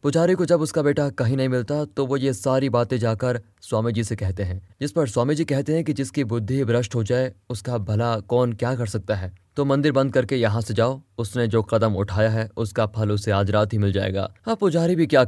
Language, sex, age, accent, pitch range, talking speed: Hindi, male, 20-39, native, 115-150 Hz, 225 wpm